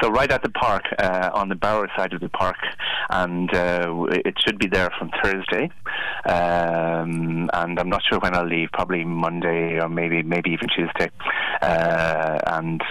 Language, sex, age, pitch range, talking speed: English, male, 30-49, 80-85 Hz, 175 wpm